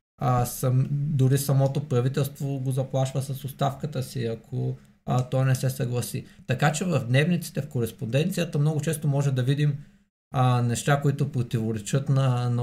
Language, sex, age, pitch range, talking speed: Bulgarian, male, 20-39, 125-145 Hz, 155 wpm